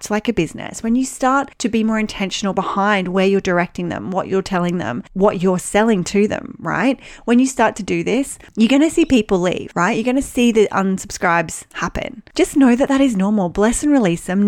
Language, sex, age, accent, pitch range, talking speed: English, female, 30-49, Australian, 195-255 Hz, 230 wpm